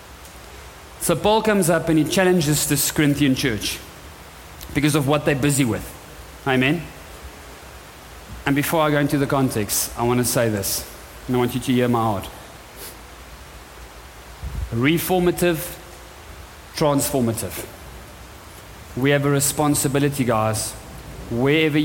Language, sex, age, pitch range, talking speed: English, male, 30-49, 85-145 Hz, 125 wpm